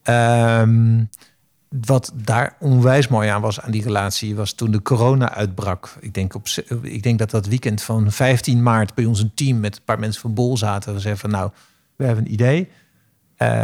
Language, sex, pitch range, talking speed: Dutch, male, 105-125 Hz, 200 wpm